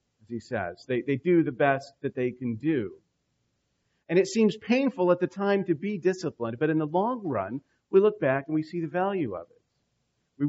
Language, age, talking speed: English, 40-59, 210 wpm